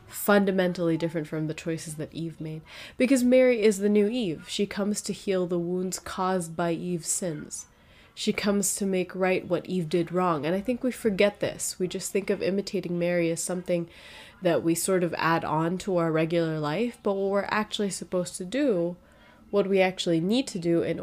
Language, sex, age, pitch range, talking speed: English, female, 20-39, 165-200 Hz, 205 wpm